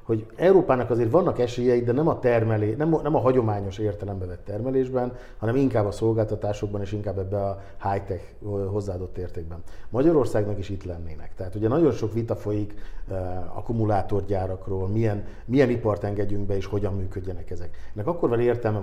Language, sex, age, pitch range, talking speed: Hungarian, male, 50-69, 100-120 Hz, 165 wpm